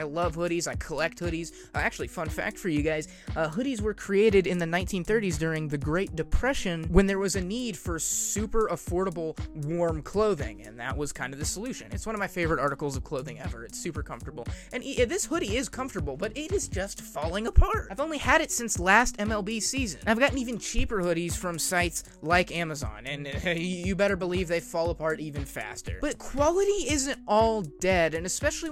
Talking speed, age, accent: 205 wpm, 20-39, American